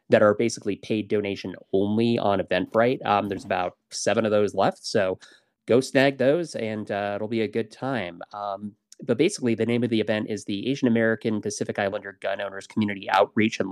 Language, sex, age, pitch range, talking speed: English, male, 30-49, 100-115 Hz, 195 wpm